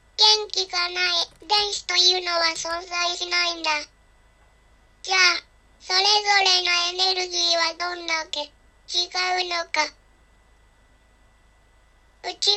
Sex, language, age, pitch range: male, Japanese, 20-39, 345-390 Hz